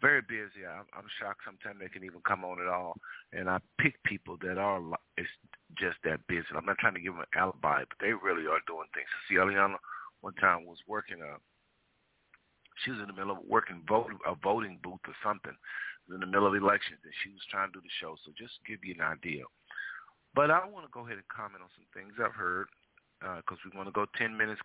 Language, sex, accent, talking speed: English, male, American, 245 wpm